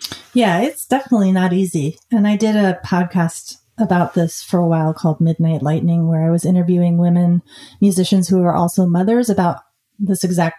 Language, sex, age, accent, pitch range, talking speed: English, female, 30-49, American, 165-195 Hz, 175 wpm